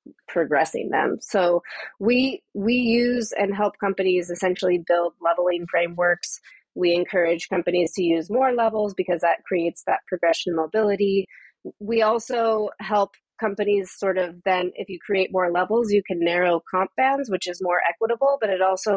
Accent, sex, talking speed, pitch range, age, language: American, female, 160 wpm, 180-220 Hz, 30-49, English